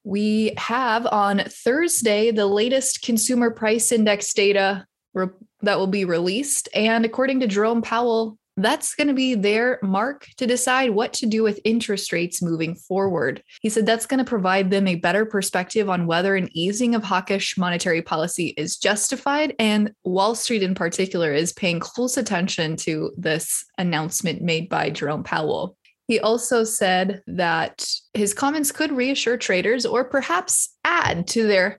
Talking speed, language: 160 wpm, English